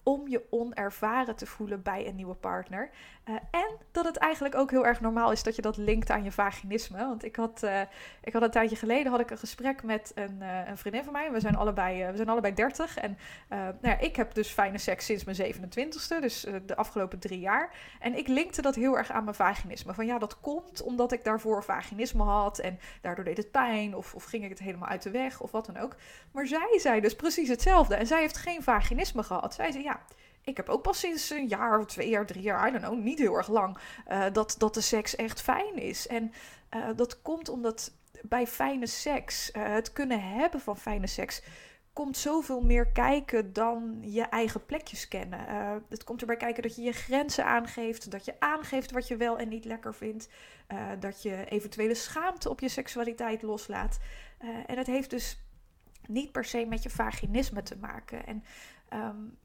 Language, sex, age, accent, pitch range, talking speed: Dutch, female, 20-39, Dutch, 215-255 Hz, 215 wpm